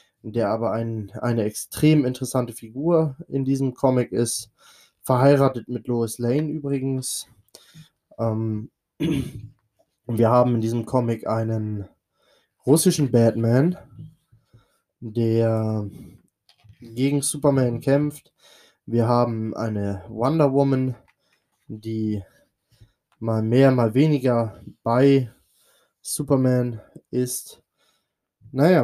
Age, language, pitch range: 20-39, German, 115-135 Hz